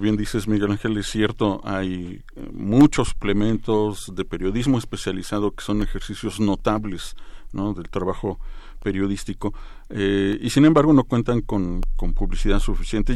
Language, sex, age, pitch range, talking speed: Spanish, male, 50-69, 100-120 Hz, 135 wpm